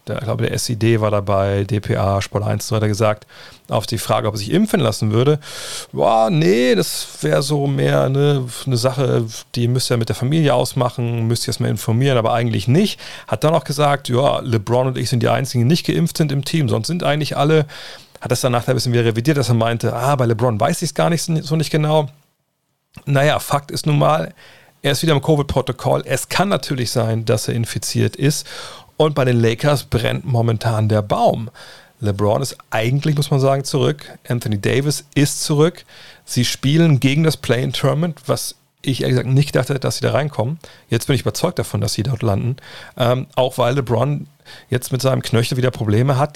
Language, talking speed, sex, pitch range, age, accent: German, 205 wpm, male, 115-145 Hz, 40-59, German